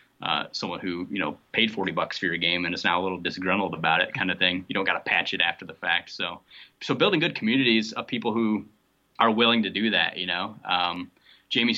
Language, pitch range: English, 95-115 Hz